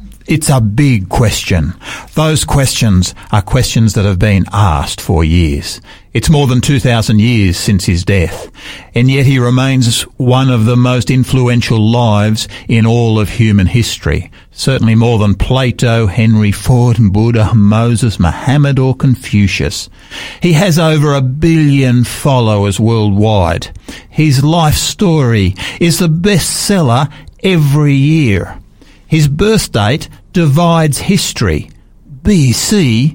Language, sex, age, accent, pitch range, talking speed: English, male, 50-69, Australian, 105-150 Hz, 125 wpm